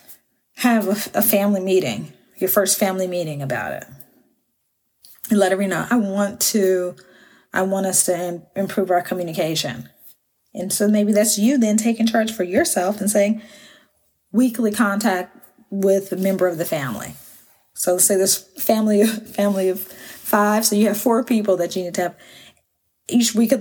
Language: English